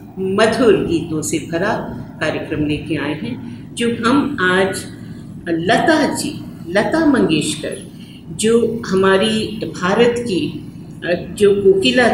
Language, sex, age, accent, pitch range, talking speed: English, female, 50-69, Indian, 165-225 Hz, 105 wpm